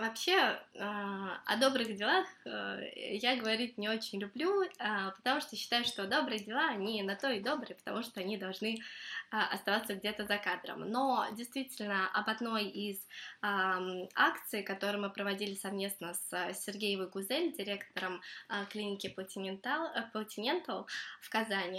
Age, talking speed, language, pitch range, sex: 20-39, 130 wpm, Russian, 200-230 Hz, female